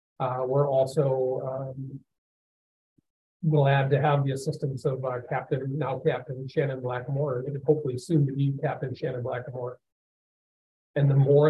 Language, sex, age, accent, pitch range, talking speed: English, male, 50-69, American, 125-145 Hz, 140 wpm